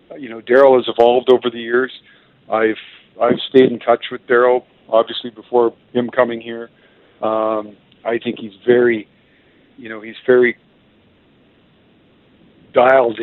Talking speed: 135 wpm